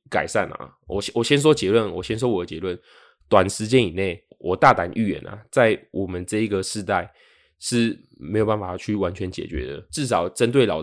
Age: 20-39